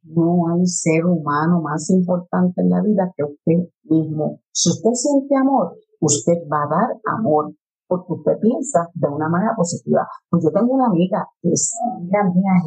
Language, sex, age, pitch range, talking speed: English, female, 50-69, 155-185 Hz, 180 wpm